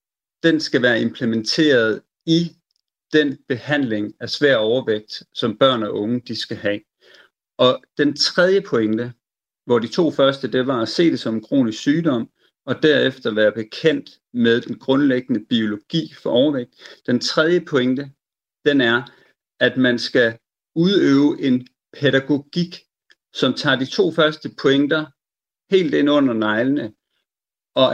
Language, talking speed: Danish, 140 wpm